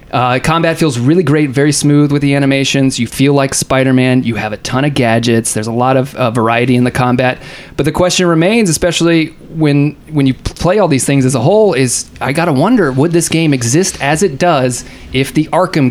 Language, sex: English, male